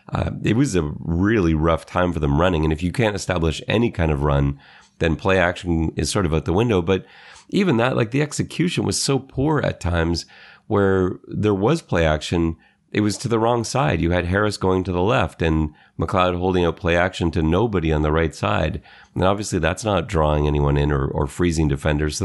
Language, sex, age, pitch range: English, male, 30-49, 80-100 Hz